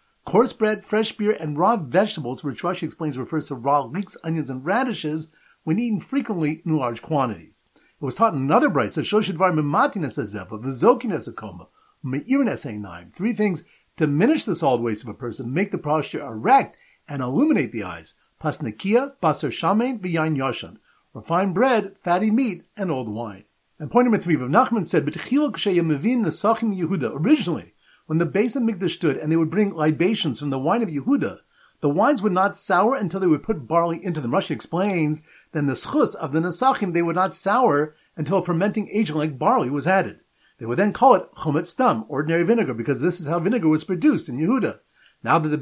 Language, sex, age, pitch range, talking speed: English, male, 50-69, 150-210 Hz, 170 wpm